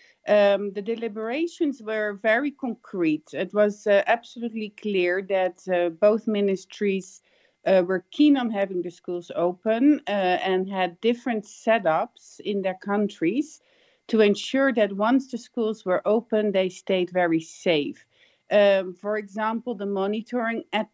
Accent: Dutch